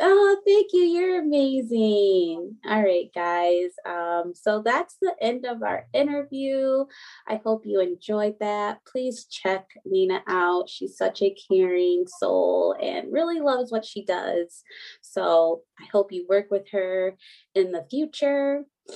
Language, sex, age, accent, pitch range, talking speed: English, female, 20-39, American, 185-280 Hz, 145 wpm